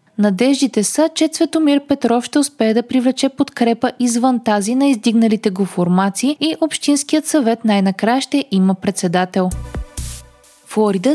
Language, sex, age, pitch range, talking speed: Bulgarian, female, 20-39, 195-275 Hz, 130 wpm